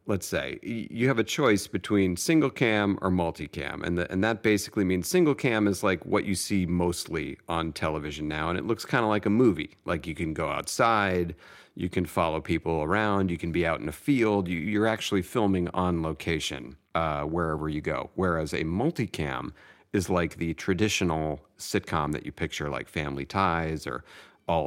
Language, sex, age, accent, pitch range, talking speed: English, male, 40-59, American, 80-100 Hz, 190 wpm